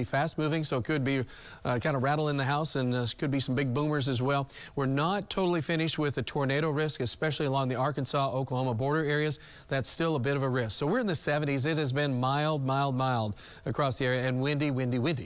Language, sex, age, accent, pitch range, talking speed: English, male, 40-59, American, 130-150 Hz, 245 wpm